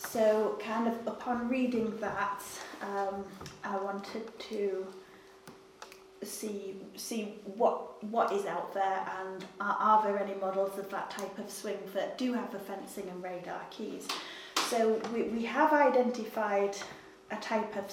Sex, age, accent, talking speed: female, 30-49, British, 145 wpm